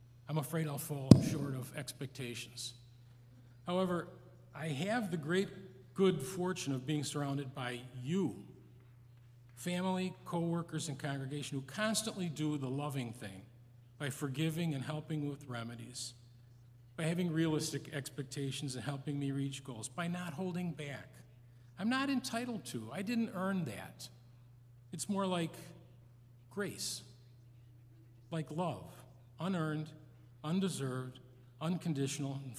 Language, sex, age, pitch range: English, male, 50-69, 120-165 Hz